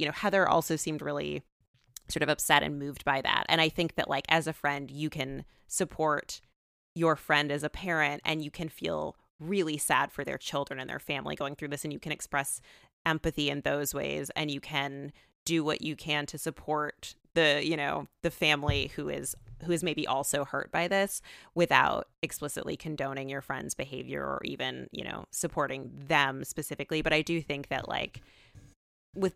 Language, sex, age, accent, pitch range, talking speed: English, female, 20-39, American, 140-165 Hz, 195 wpm